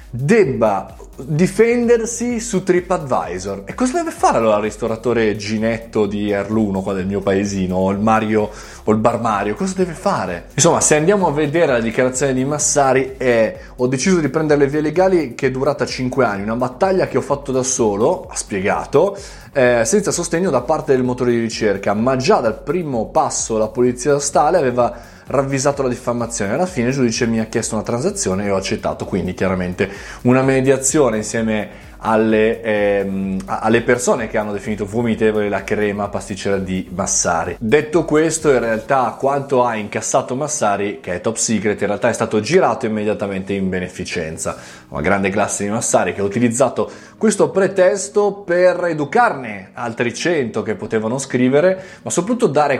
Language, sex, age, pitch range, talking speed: Italian, male, 20-39, 105-150 Hz, 170 wpm